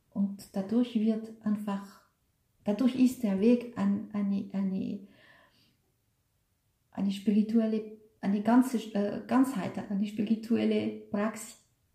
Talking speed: 100 wpm